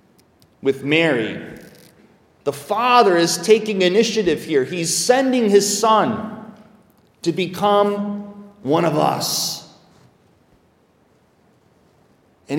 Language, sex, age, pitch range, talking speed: English, male, 30-49, 170-220 Hz, 85 wpm